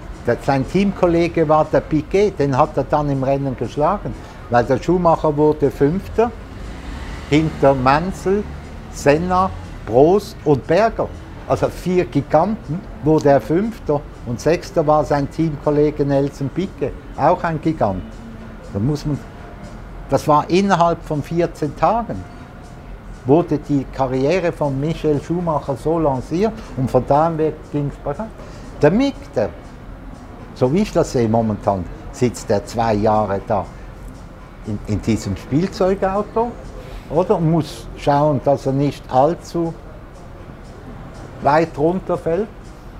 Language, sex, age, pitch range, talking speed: German, male, 60-79, 120-160 Hz, 115 wpm